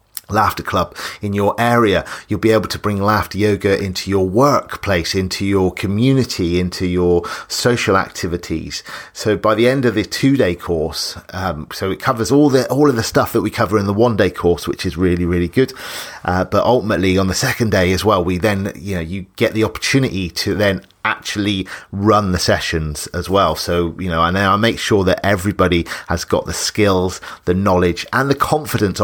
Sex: male